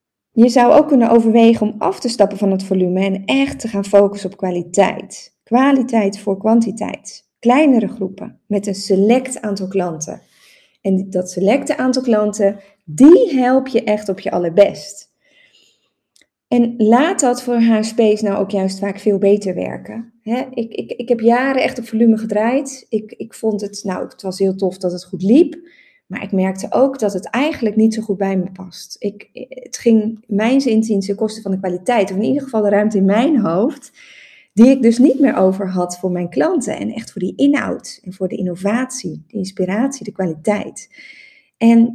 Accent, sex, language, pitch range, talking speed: Dutch, female, Dutch, 195-245 Hz, 185 wpm